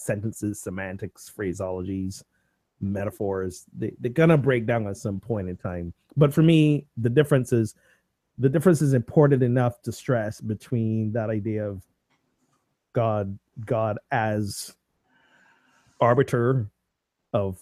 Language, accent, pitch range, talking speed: English, American, 95-115 Hz, 115 wpm